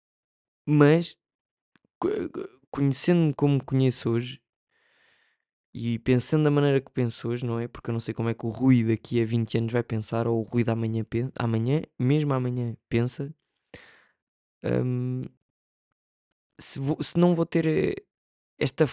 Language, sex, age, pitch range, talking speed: Portuguese, male, 20-39, 115-130 Hz, 145 wpm